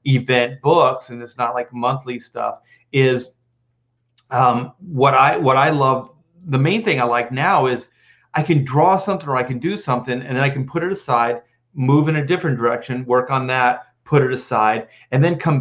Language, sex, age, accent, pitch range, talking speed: English, male, 40-59, American, 120-145 Hz, 200 wpm